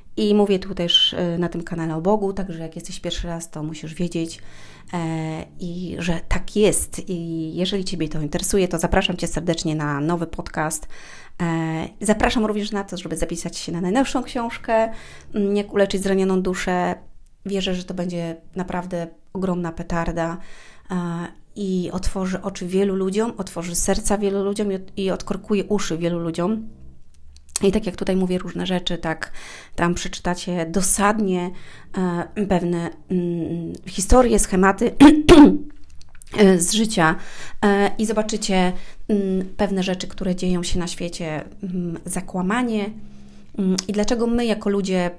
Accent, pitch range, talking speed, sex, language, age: native, 170-195 Hz, 140 wpm, female, Polish, 30-49